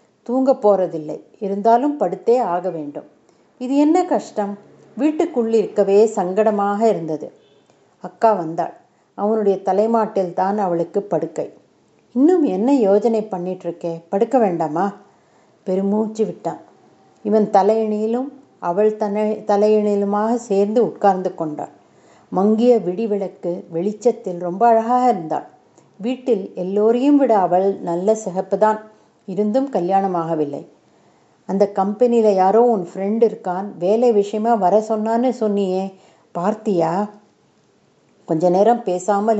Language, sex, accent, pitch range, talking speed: Tamil, female, native, 185-220 Hz, 95 wpm